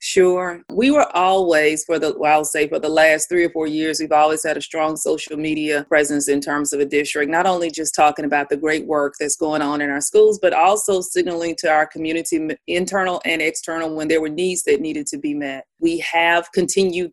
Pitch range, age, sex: 155-185 Hz, 30-49, female